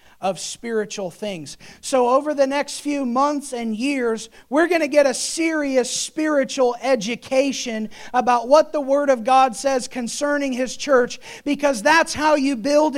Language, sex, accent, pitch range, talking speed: English, male, American, 255-310 Hz, 155 wpm